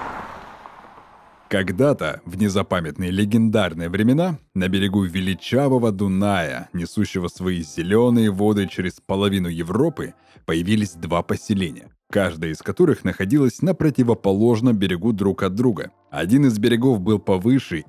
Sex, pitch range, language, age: male, 95-120 Hz, Russian, 30-49